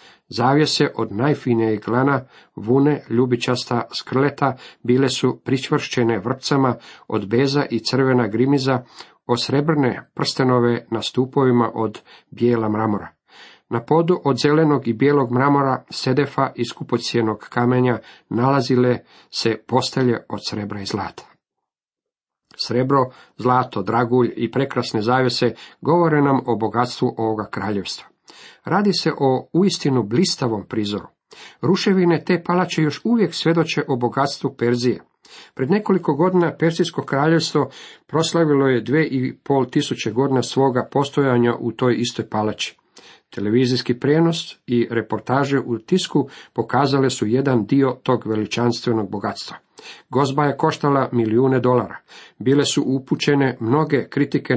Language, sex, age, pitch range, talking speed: Croatian, male, 50-69, 120-145 Hz, 120 wpm